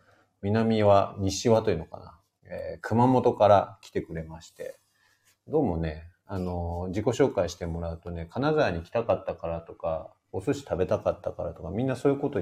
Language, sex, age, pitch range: Japanese, male, 40-59, 85-115 Hz